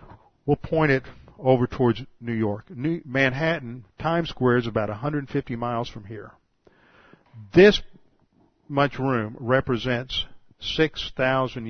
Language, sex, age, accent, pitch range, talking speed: English, male, 50-69, American, 115-140 Hz, 115 wpm